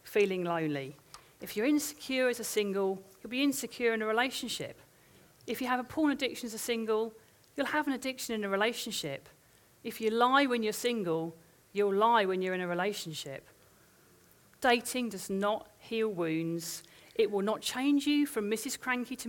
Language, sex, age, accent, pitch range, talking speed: English, female, 40-59, British, 170-240 Hz, 175 wpm